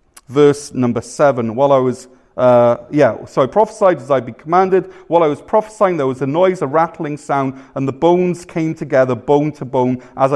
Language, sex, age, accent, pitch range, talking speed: English, male, 30-49, British, 135-170 Hz, 205 wpm